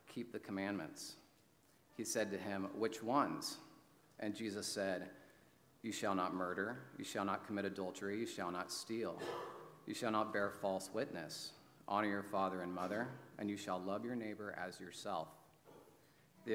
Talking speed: 165 wpm